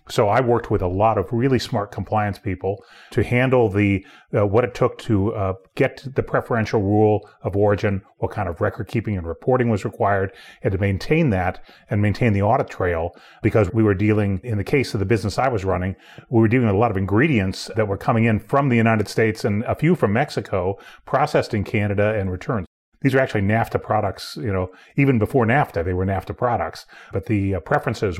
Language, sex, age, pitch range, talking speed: English, male, 30-49, 100-120 Hz, 215 wpm